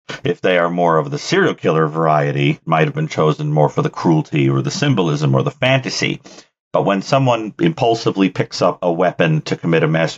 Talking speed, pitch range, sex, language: 205 wpm, 75-100 Hz, male, English